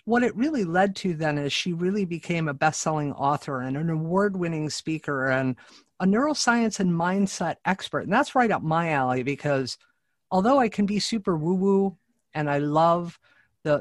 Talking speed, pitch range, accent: 175 wpm, 145-200 Hz, American